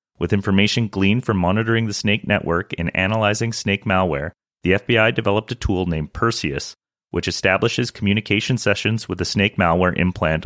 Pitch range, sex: 90-110 Hz, male